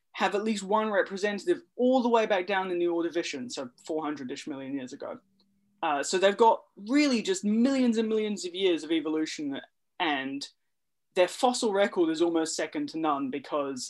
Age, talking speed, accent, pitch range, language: 20-39, 180 wpm, Australian, 155-215 Hz, English